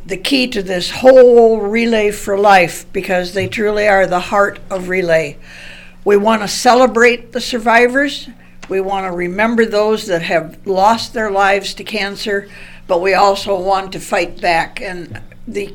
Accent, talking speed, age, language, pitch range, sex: American, 165 wpm, 60-79, English, 190-230 Hz, female